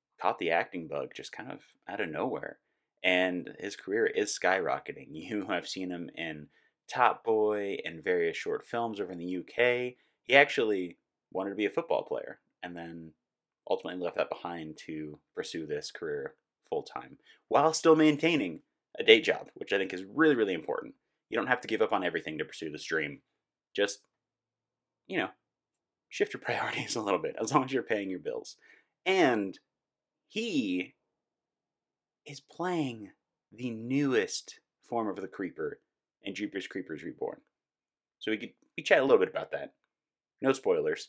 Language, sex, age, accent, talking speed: English, male, 30-49, American, 170 wpm